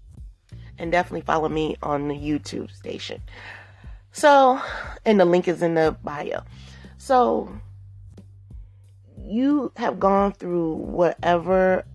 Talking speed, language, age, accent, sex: 105 wpm, English, 30-49, American, female